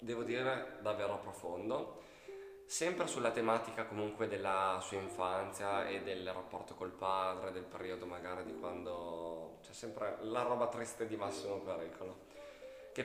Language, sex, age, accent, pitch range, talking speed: Italian, male, 20-39, native, 90-115 Hz, 140 wpm